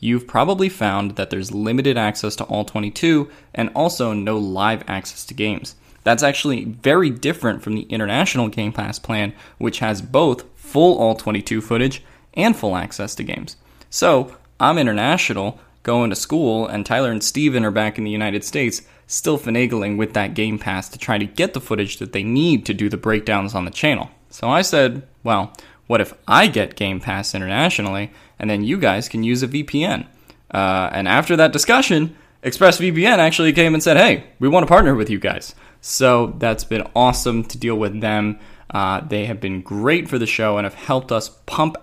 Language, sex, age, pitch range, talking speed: English, male, 20-39, 105-135 Hz, 195 wpm